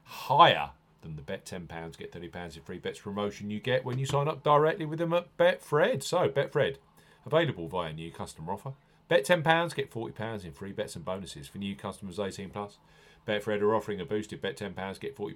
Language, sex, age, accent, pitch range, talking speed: English, male, 40-59, British, 100-135 Hz, 225 wpm